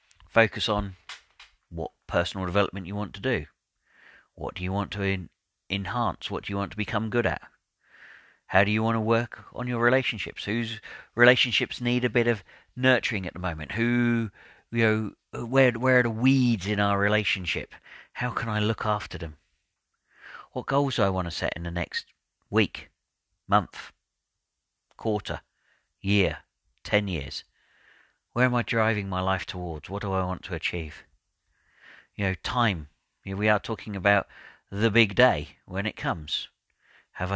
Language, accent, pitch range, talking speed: English, British, 95-115 Hz, 165 wpm